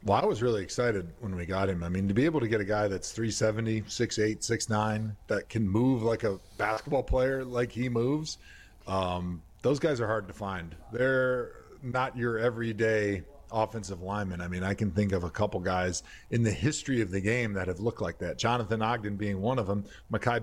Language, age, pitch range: English, 40-59, 100-125 Hz